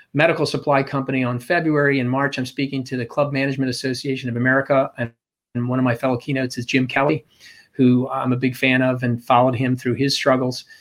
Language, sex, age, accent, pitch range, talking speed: English, male, 40-59, American, 130-150 Hz, 205 wpm